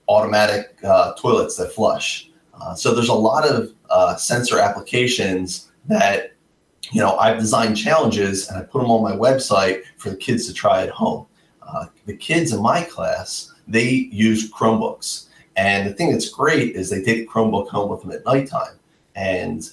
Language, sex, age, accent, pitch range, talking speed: English, male, 30-49, American, 95-125 Hz, 175 wpm